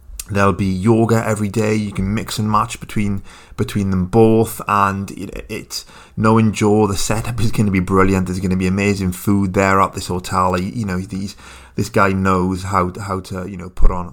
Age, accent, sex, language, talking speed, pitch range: 30-49, British, male, English, 215 wpm, 90-115 Hz